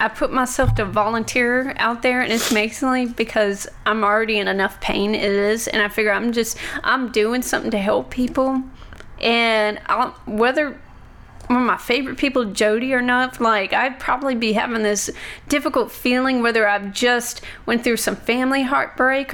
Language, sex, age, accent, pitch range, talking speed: English, female, 30-49, American, 220-265 Hz, 175 wpm